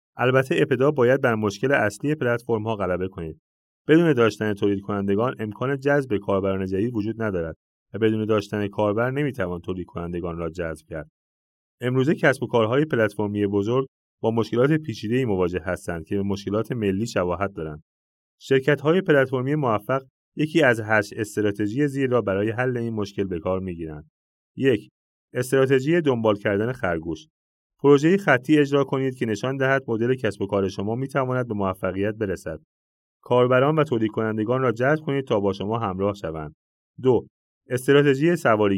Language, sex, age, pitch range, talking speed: Persian, male, 30-49, 100-130 Hz, 155 wpm